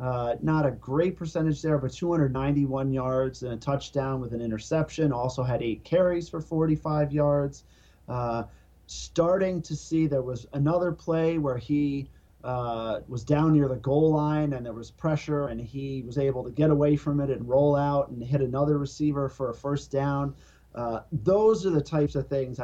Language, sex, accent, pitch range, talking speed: English, male, American, 125-155 Hz, 185 wpm